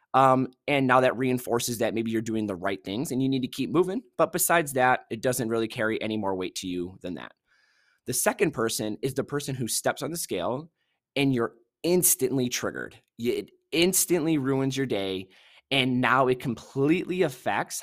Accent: American